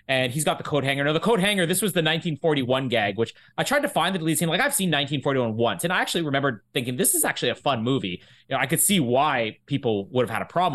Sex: male